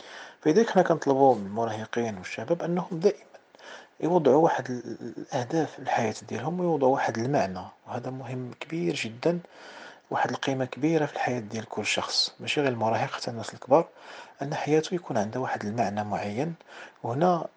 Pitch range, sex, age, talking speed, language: 115-150 Hz, male, 40-59, 145 wpm, Arabic